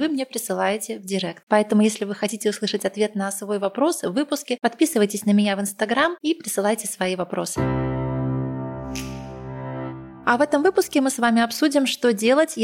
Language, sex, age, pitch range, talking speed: Russian, female, 20-39, 195-240 Hz, 165 wpm